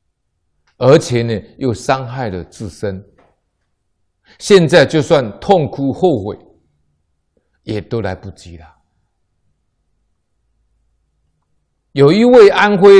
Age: 50-69